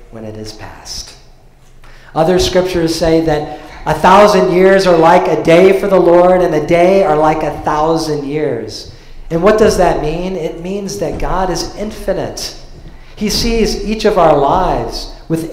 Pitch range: 140-185 Hz